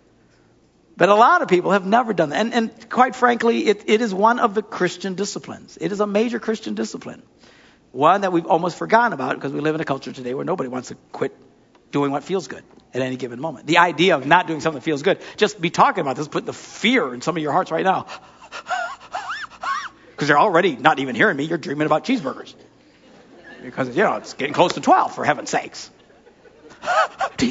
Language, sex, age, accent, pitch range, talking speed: English, male, 60-79, American, 155-245 Hz, 220 wpm